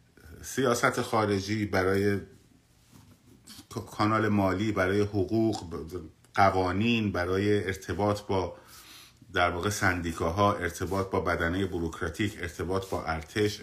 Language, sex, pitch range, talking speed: Persian, male, 105-140 Hz, 90 wpm